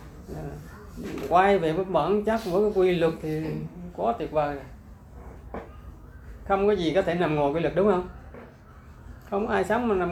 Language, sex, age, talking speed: Vietnamese, male, 20-39, 170 wpm